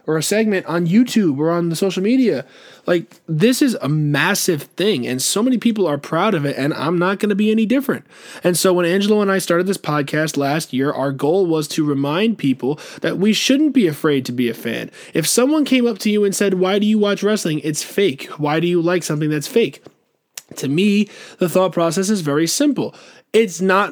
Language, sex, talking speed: English, male, 225 wpm